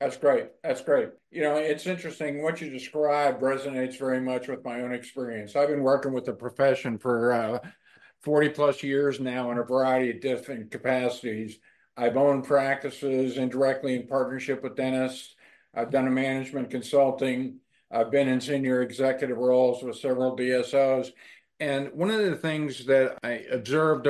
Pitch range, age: 125-145 Hz, 50-69